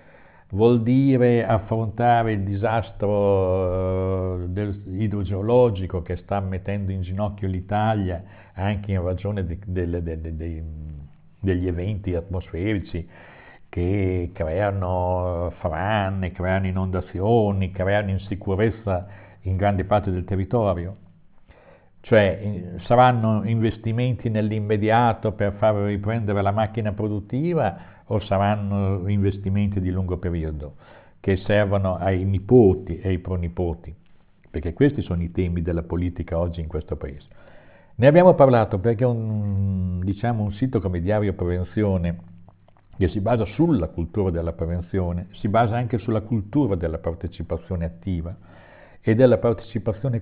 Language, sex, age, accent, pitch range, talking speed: Italian, male, 50-69, native, 90-110 Hz, 110 wpm